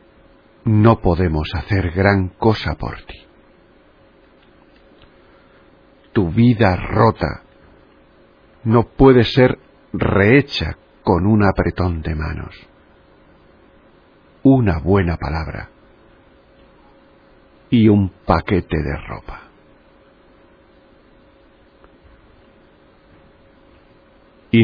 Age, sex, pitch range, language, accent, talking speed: 50-69, male, 90-110 Hz, Spanish, Spanish, 70 wpm